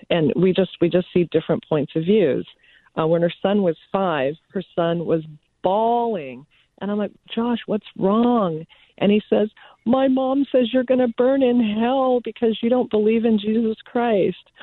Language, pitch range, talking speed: English, 155-195 Hz, 185 wpm